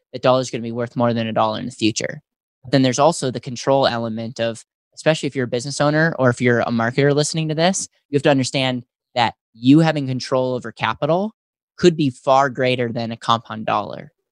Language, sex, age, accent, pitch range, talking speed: English, male, 10-29, American, 120-145 Hz, 220 wpm